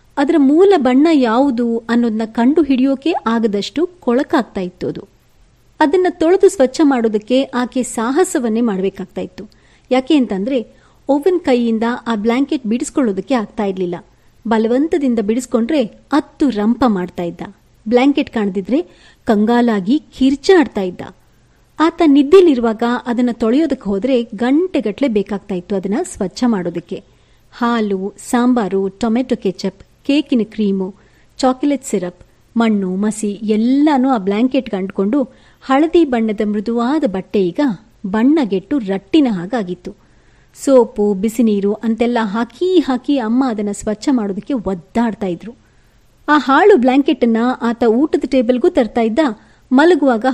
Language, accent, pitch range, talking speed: Kannada, native, 215-280 Hz, 110 wpm